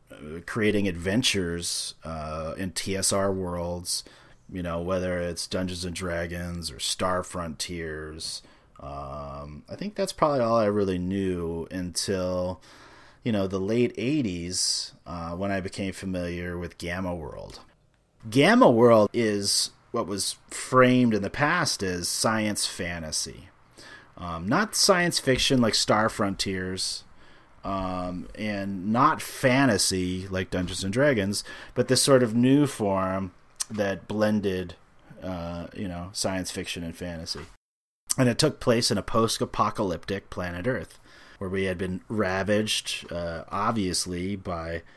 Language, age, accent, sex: English, 30-49, American, male